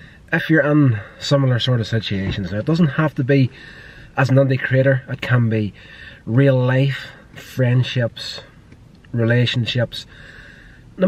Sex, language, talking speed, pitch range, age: male, English, 135 wpm, 105-135 Hz, 30-49